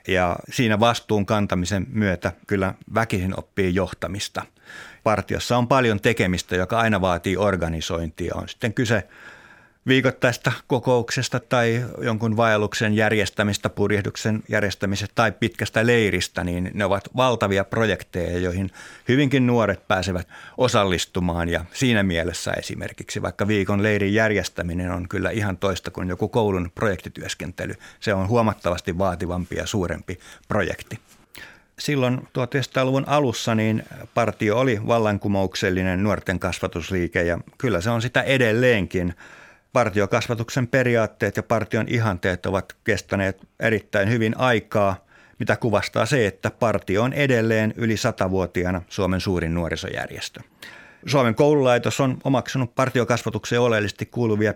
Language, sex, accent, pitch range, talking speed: Finnish, male, native, 95-115 Hz, 115 wpm